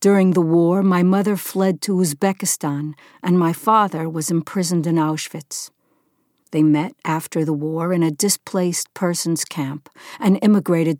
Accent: American